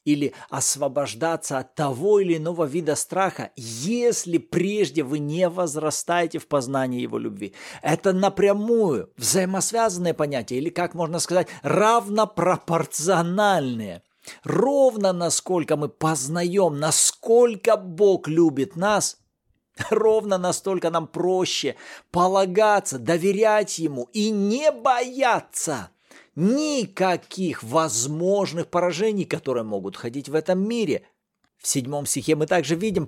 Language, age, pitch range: Russian, 50-69, 160-210 Hz